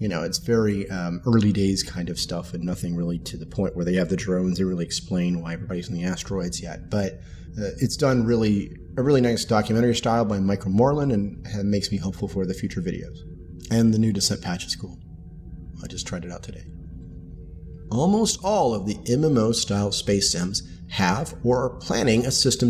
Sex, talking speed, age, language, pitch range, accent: male, 210 wpm, 30-49, English, 95-130 Hz, American